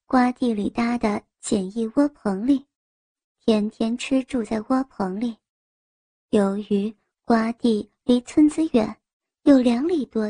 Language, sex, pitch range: Chinese, male, 220-290 Hz